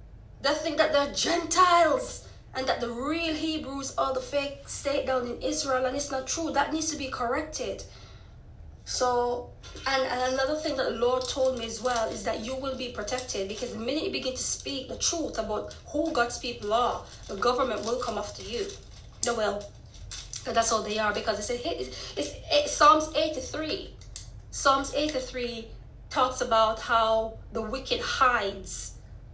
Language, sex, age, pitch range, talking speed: English, female, 20-39, 215-275 Hz, 170 wpm